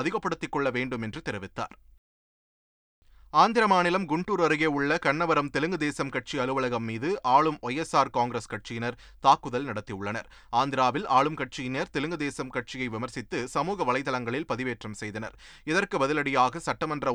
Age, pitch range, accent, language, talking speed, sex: 30-49, 115-150 Hz, native, Tamil, 115 wpm, male